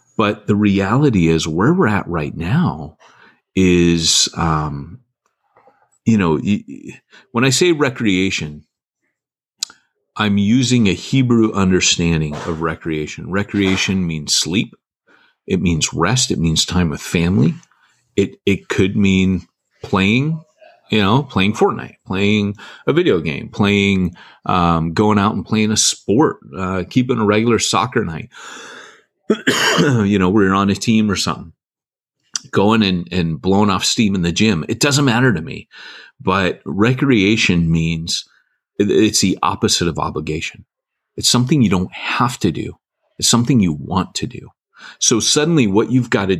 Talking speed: 145 wpm